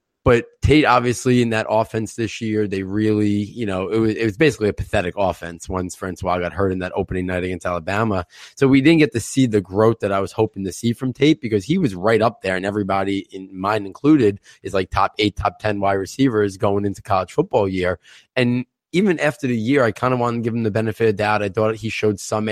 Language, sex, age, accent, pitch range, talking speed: English, male, 20-39, American, 100-120 Hz, 235 wpm